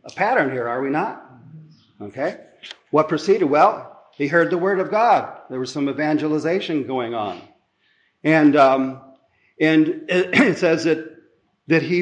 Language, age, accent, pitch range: English, 50-69, American, 120-160 Hz